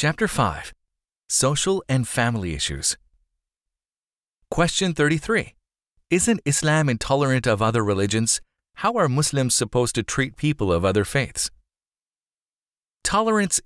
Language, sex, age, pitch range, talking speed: English, male, 30-49, 105-140 Hz, 110 wpm